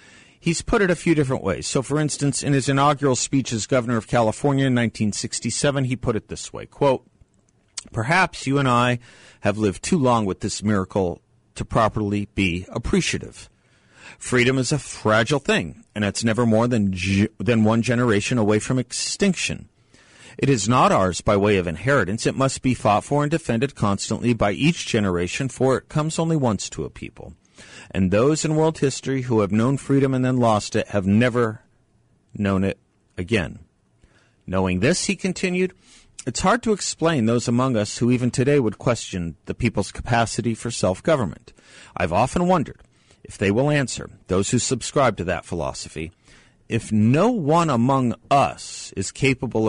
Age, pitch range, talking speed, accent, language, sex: 40-59, 100-135 Hz, 175 wpm, American, English, male